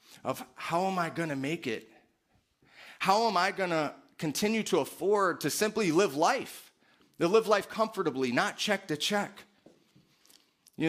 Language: English